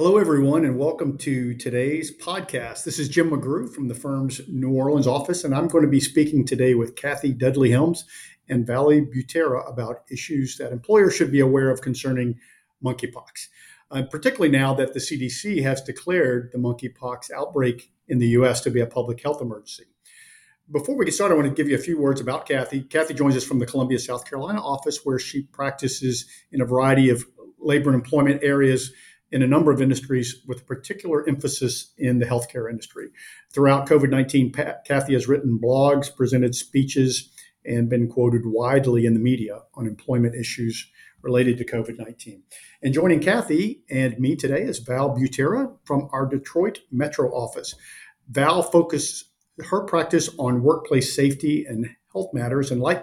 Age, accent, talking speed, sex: 50-69, American, 175 wpm, male